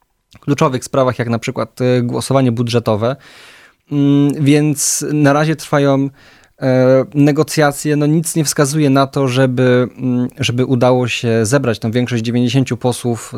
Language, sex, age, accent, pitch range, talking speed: Polish, male, 20-39, native, 125-145 Hz, 120 wpm